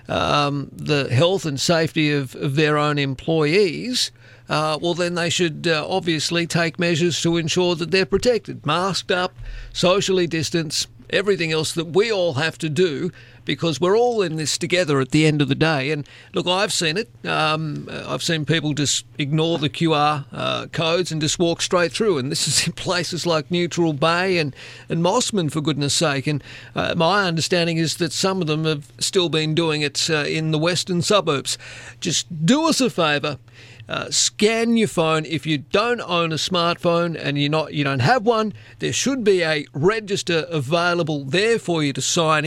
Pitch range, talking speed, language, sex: 145-180 Hz, 190 wpm, English, male